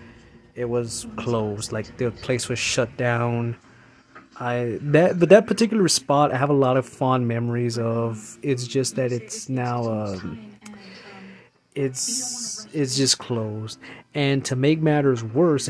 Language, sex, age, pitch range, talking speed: English, male, 20-39, 120-145 Hz, 150 wpm